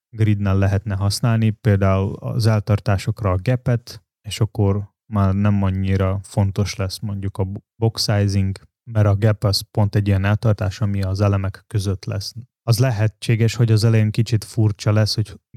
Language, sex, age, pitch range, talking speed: Hungarian, male, 20-39, 100-110 Hz, 155 wpm